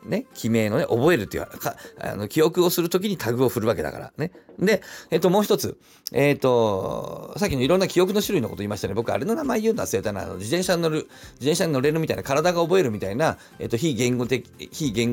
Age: 40-59